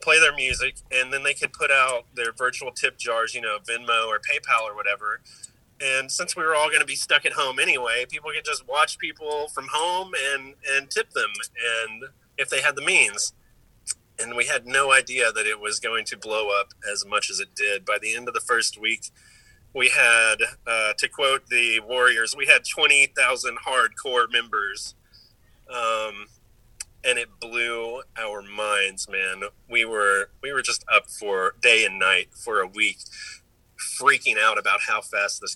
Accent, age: American, 30-49